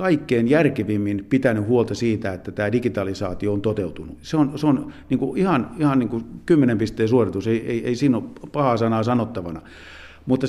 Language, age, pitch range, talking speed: Finnish, 50-69, 105-135 Hz, 170 wpm